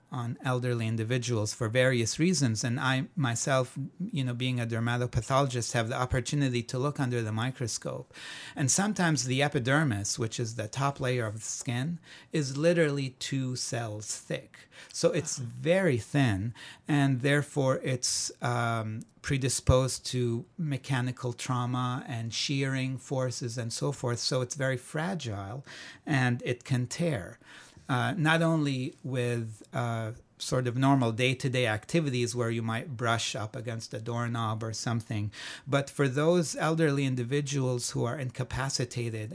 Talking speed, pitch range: 140 wpm, 120-140 Hz